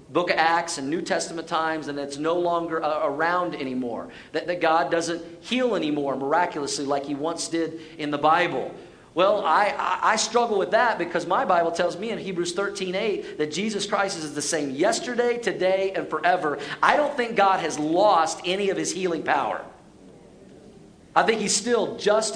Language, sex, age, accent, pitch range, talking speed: English, male, 40-59, American, 150-195 Hz, 185 wpm